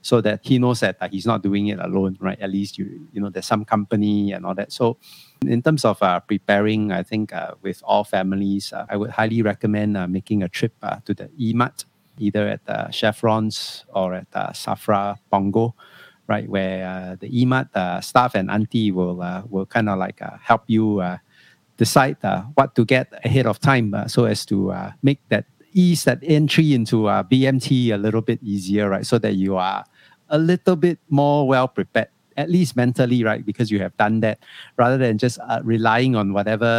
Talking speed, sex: 205 wpm, male